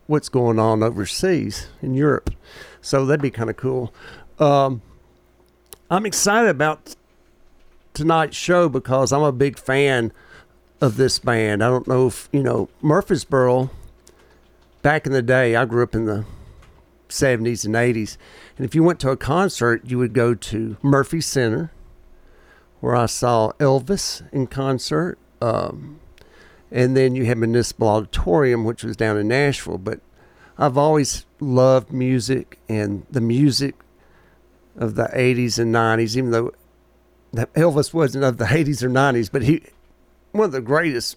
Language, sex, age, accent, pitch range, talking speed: English, male, 50-69, American, 110-140 Hz, 155 wpm